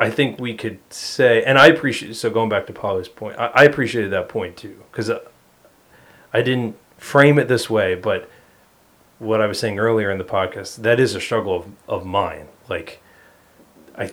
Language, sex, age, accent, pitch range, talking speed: English, male, 30-49, American, 95-125 Hz, 195 wpm